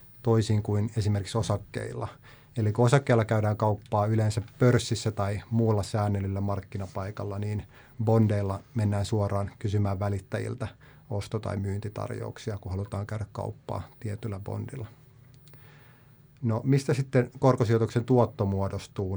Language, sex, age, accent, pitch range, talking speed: Finnish, male, 30-49, native, 105-125 Hz, 115 wpm